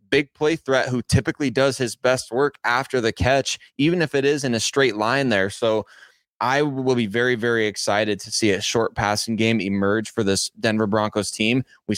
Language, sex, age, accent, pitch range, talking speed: English, male, 20-39, American, 105-125 Hz, 205 wpm